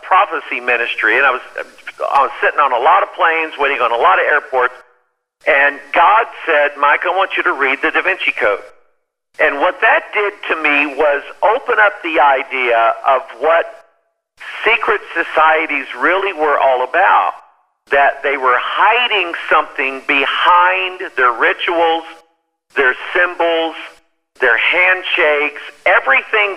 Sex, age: male, 50-69